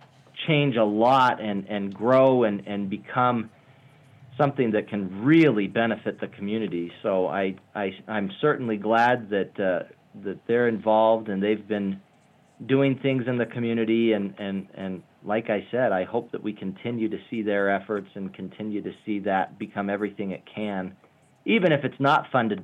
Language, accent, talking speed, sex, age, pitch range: English, American, 170 wpm, male, 40-59, 105-130 Hz